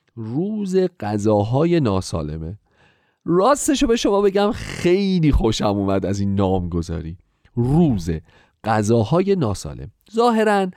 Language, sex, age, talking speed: Persian, male, 40-59, 100 wpm